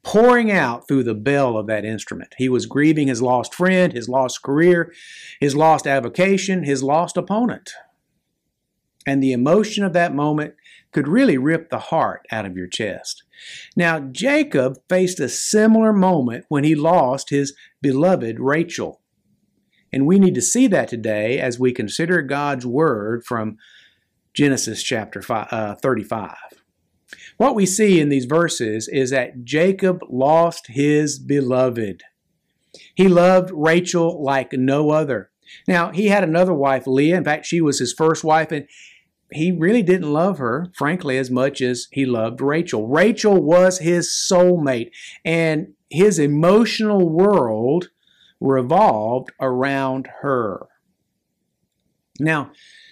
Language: English